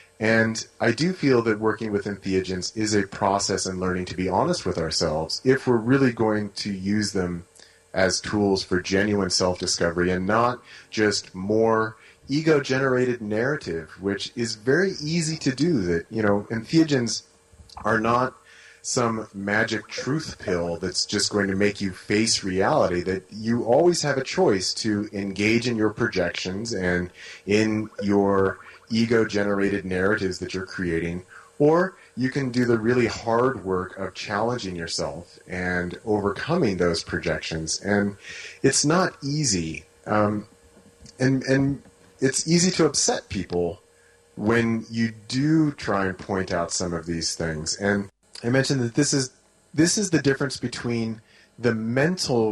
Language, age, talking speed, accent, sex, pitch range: English, 30-49, 150 wpm, American, male, 95-120 Hz